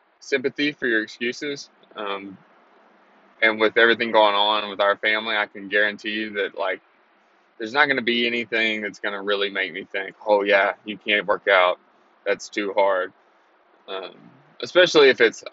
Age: 20-39